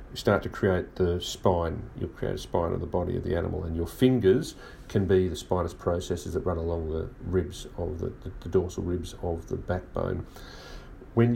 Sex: male